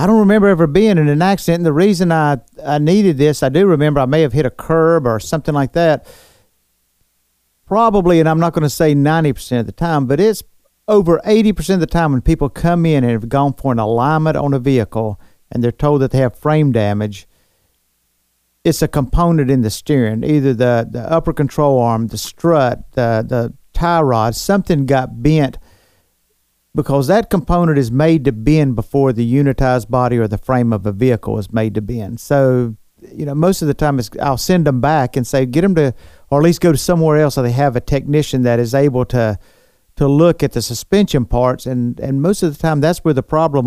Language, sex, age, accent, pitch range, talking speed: English, male, 50-69, American, 120-160 Hz, 220 wpm